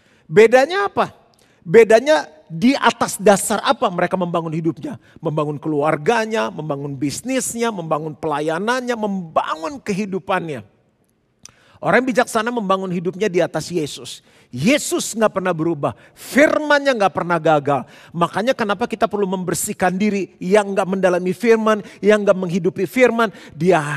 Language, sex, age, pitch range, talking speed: Indonesian, male, 40-59, 180-245 Hz, 125 wpm